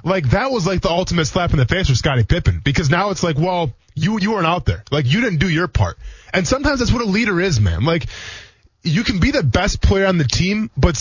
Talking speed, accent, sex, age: 260 wpm, American, male, 20-39